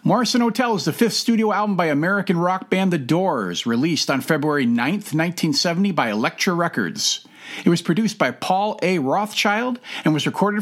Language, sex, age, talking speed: English, male, 50-69, 175 wpm